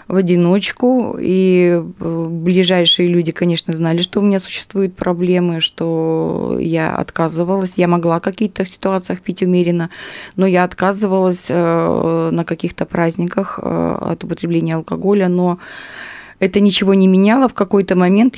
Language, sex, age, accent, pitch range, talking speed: Russian, female, 20-39, native, 155-185 Hz, 125 wpm